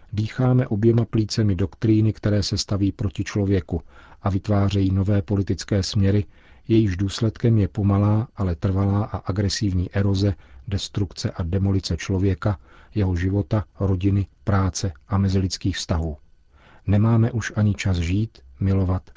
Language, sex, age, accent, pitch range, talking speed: Czech, male, 40-59, native, 90-105 Hz, 125 wpm